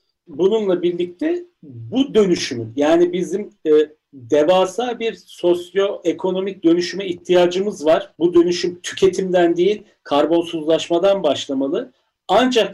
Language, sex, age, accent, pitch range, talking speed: Turkish, male, 50-69, native, 160-215 Hz, 95 wpm